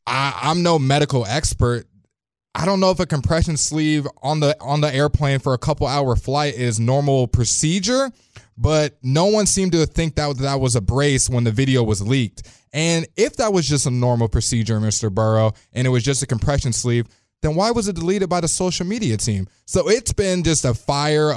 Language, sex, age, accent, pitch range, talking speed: English, male, 20-39, American, 120-150 Hz, 200 wpm